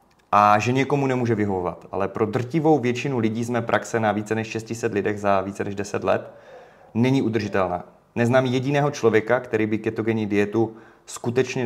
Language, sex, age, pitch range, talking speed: Czech, male, 30-49, 110-130 Hz, 165 wpm